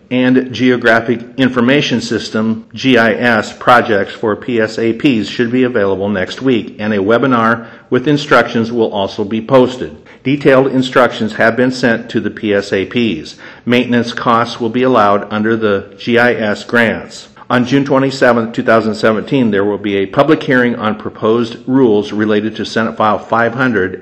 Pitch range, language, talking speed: 110-125 Hz, English, 140 wpm